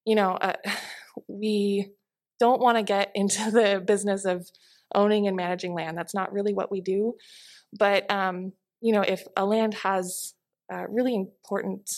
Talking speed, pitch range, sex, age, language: 165 wpm, 175-205 Hz, female, 20-39, English